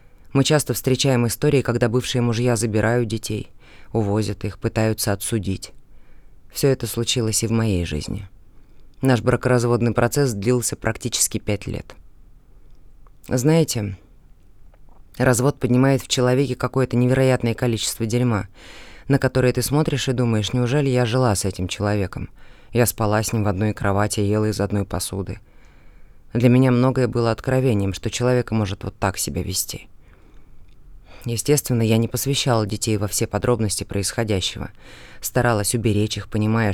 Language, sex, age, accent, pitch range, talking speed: Russian, female, 20-39, native, 105-125 Hz, 135 wpm